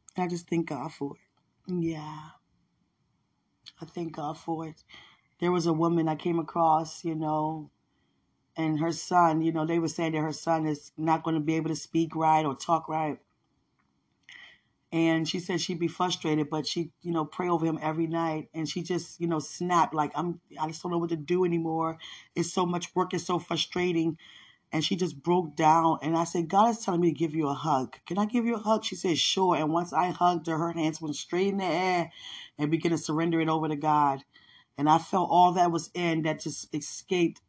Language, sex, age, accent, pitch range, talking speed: English, female, 20-39, American, 155-170 Hz, 220 wpm